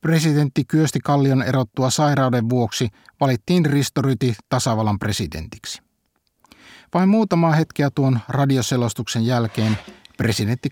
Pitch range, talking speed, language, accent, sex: 115-140 Hz, 100 wpm, Finnish, native, male